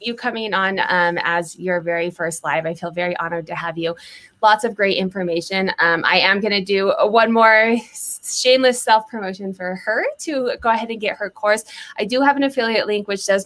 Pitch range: 175-210 Hz